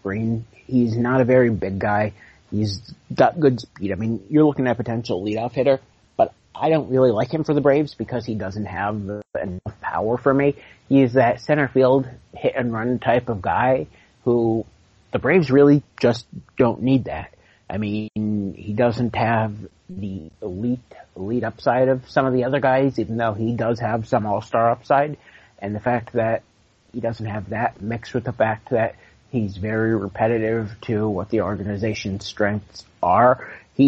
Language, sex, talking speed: English, male, 180 wpm